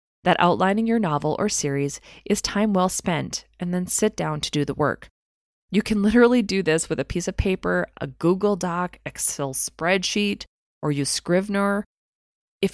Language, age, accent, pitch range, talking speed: English, 20-39, American, 165-205 Hz, 175 wpm